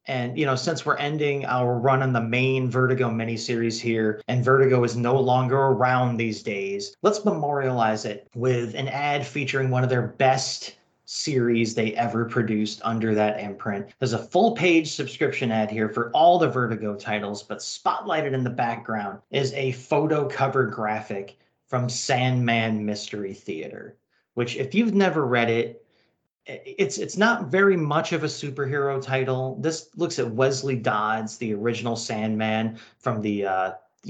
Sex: male